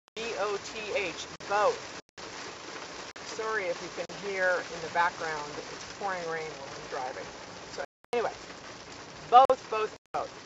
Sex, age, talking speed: female, 40-59, 130 wpm